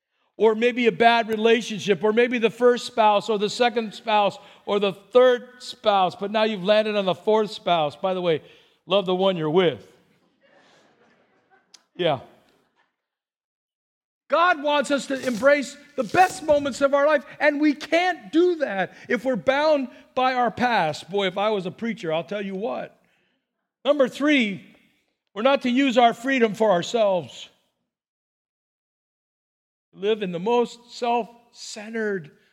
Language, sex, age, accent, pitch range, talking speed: English, male, 50-69, American, 200-250 Hz, 150 wpm